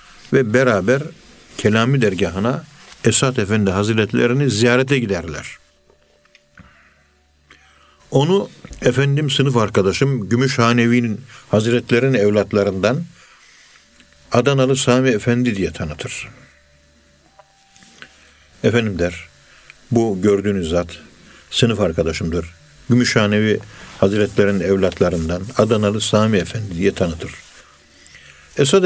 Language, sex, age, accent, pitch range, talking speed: Turkish, male, 60-79, native, 95-125 Hz, 75 wpm